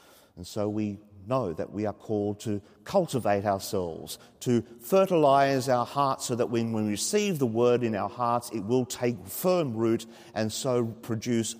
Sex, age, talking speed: male, 40-59, 170 wpm